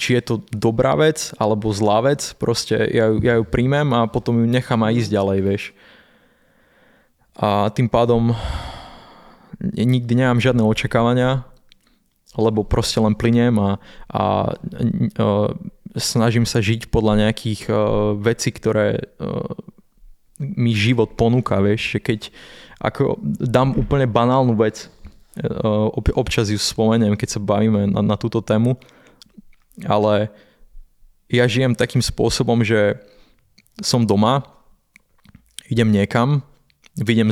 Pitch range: 105-125 Hz